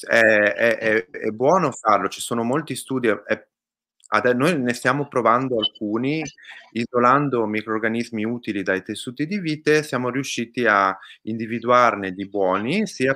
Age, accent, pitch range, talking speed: 30-49, native, 100-125 Hz, 135 wpm